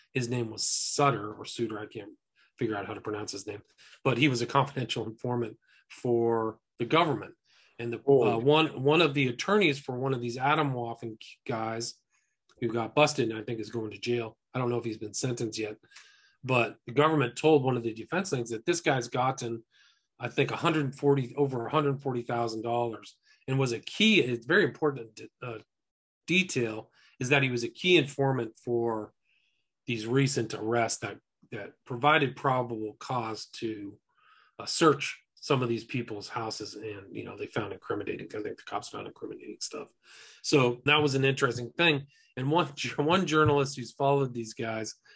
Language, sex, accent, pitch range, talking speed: English, male, American, 115-140 Hz, 185 wpm